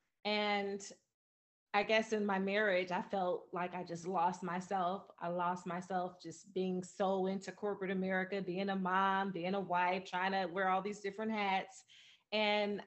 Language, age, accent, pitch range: English, 30-49, American, 180-215 Hz